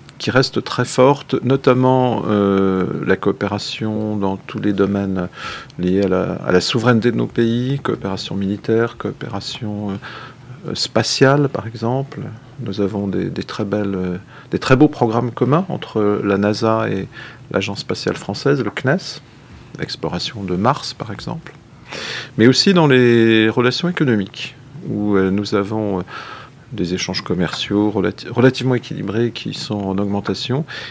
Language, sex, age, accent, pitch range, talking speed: French, male, 40-59, French, 100-130 Hz, 145 wpm